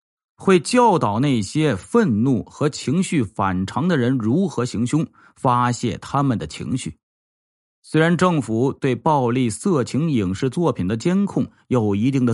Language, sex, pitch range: Chinese, male, 120-170 Hz